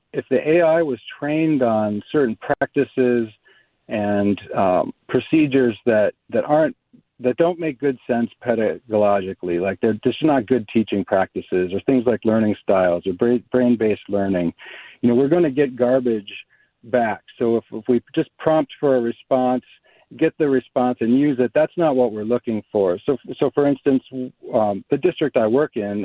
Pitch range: 105-130 Hz